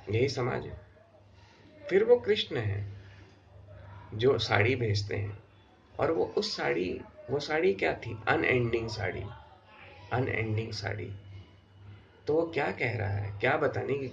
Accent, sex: native, male